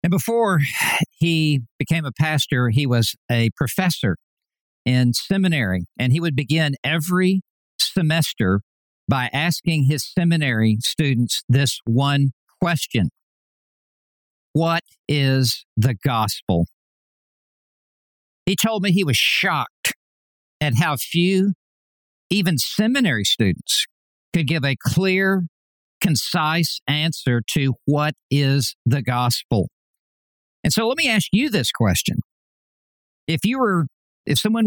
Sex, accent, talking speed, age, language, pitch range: male, American, 115 wpm, 60-79, English, 125-180 Hz